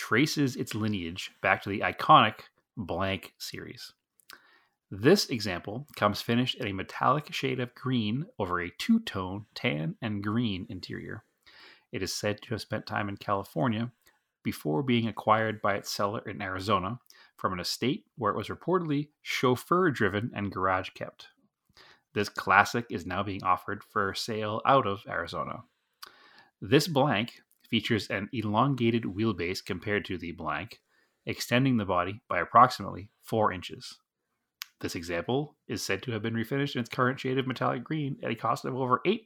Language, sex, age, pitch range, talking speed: English, male, 30-49, 100-130 Hz, 155 wpm